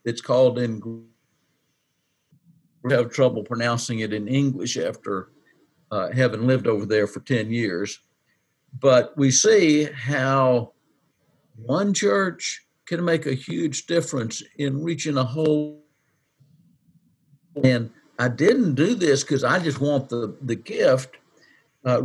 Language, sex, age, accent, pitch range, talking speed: English, male, 60-79, American, 120-160 Hz, 130 wpm